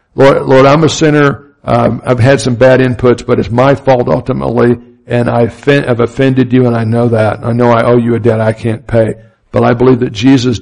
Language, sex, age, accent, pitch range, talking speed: English, male, 60-79, American, 120-135 Hz, 230 wpm